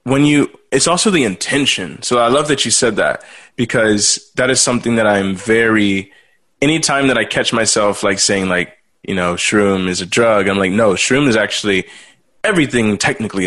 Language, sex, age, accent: English, male, 20-39, American